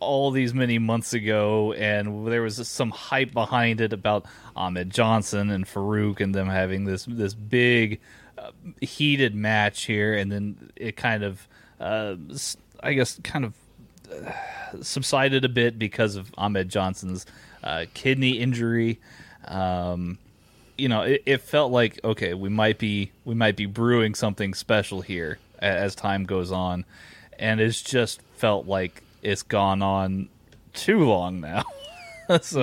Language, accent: English, American